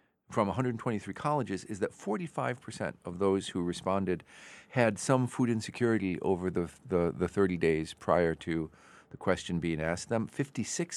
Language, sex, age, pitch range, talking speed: English, male, 50-69, 90-120 Hz, 190 wpm